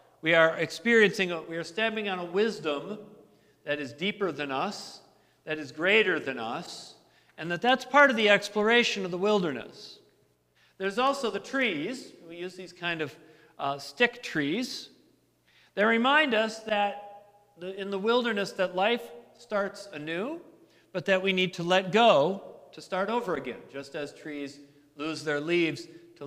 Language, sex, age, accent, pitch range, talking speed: English, male, 50-69, American, 160-210 Hz, 160 wpm